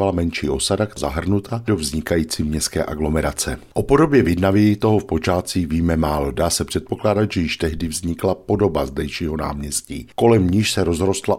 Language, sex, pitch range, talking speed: Czech, male, 80-105 Hz, 155 wpm